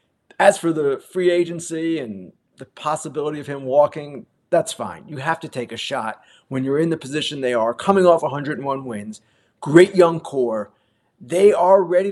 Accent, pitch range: American, 150-190 Hz